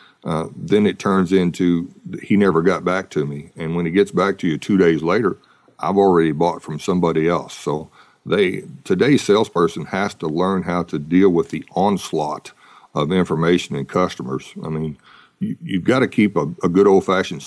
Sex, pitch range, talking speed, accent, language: male, 85-95 Hz, 190 wpm, American, English